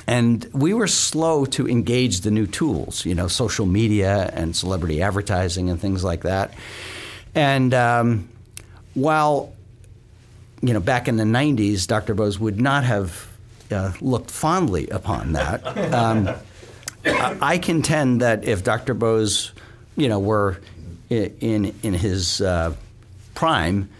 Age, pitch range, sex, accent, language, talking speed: 50-69, 95-120 Hz, male, American, English, 135 wpm